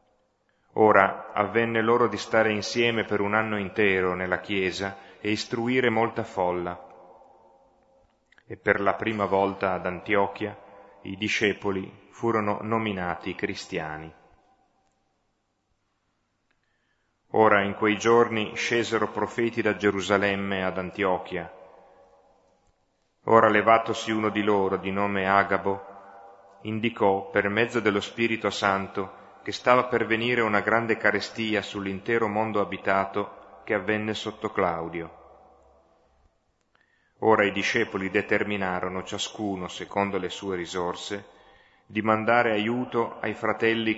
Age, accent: 30-49, native